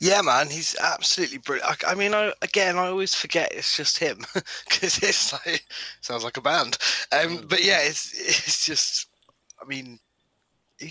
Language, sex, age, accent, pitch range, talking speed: English, male, 20-39, British, 110-165 Hz, 175 wpm